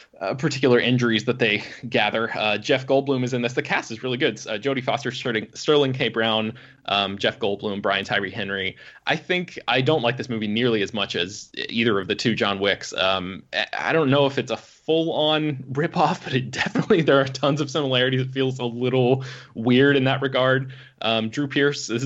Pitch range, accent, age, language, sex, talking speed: 115-140 Hz, American, 20-39, English, male, 210 wpm